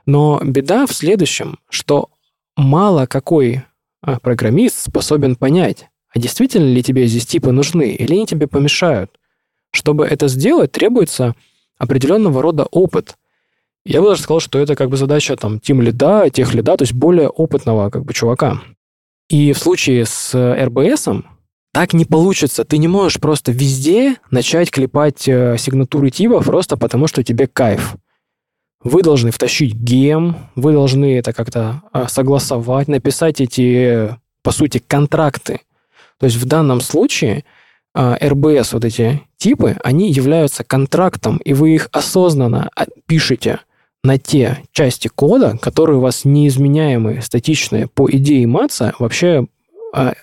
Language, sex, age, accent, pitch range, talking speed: Russian, male, 20-39, native, 125-150 Hz, 135 wpm